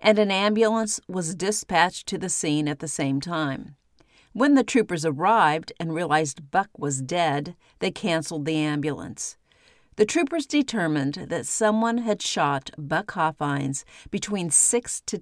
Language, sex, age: English, female, 50-69